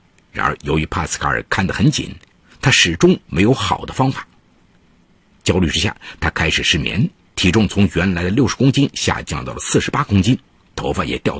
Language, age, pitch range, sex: Chinese, 50-69, 90-115 Hz, male